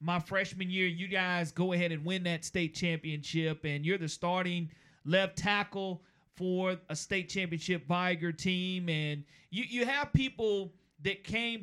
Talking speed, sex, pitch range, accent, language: 160 wpm, male, 165-200 Hz, American, English